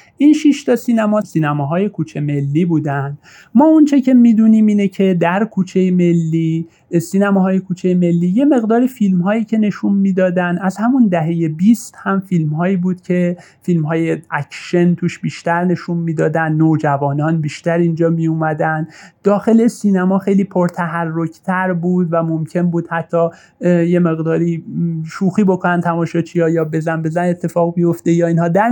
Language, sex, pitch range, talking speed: Persian, male, 155-195 Hz, 150 wpm